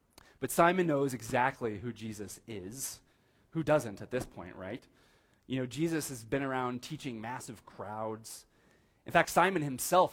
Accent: American